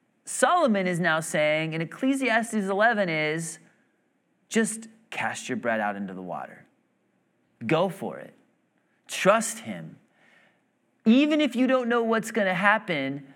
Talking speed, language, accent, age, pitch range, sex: 135 wpm, English, American, 30-49, 165-210 Hz, male